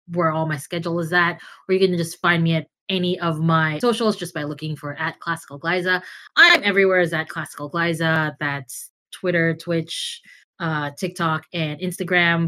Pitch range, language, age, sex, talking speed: 170-215 Hz, English, 20-39, female, 180 wpm